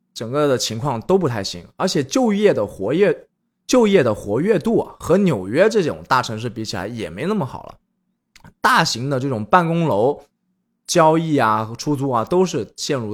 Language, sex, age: Chinese, male, 20-39